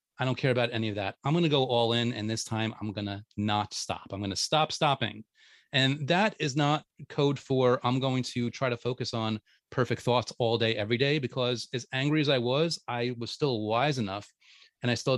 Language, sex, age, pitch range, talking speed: English, male, 30-49, 110-135 Hz, 235 wpm